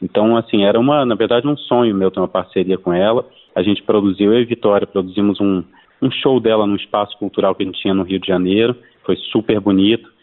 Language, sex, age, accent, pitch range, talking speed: Portuguese, male, 30-49, Brazilian, 95-120 Hz, 230 wpm